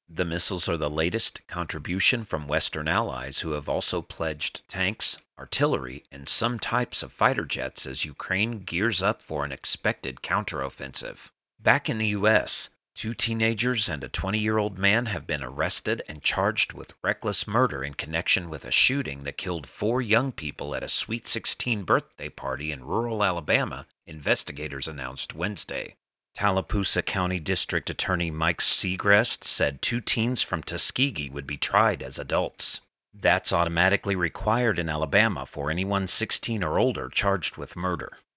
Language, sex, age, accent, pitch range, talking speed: English, male, 40-59, American, 80-105 Hz, 155 wpm